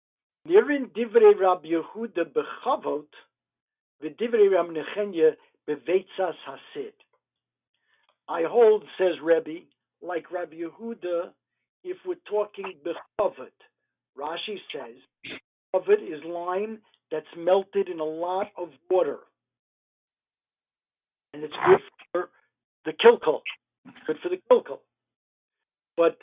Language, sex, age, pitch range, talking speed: English, male, 60-79, 160-260 Hz, 80 wpm